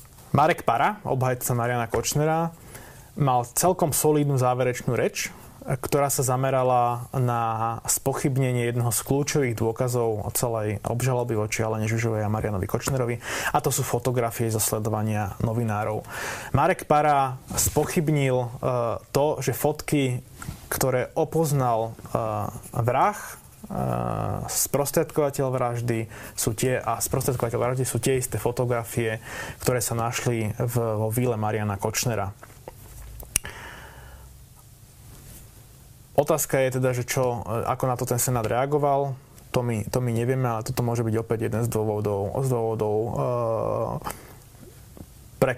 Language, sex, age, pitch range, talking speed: Slovak, male, 20-39, 115-135 Hz, 115 wpm